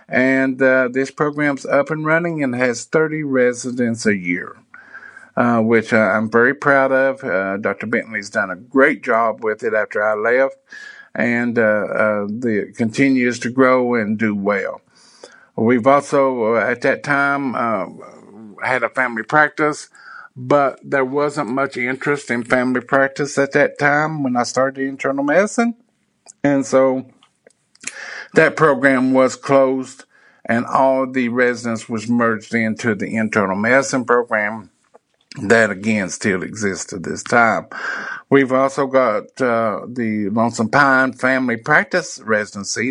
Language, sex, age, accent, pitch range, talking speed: English, male, 50-69, American, 115-140 Hz, 145 wpm